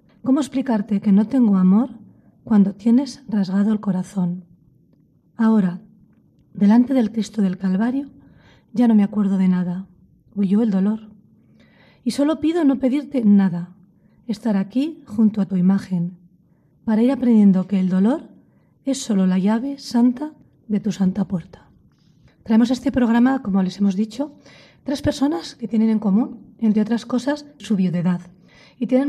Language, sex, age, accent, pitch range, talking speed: Spanish, female, 40-59, Spanish, 195-255 Hz, 150 wpm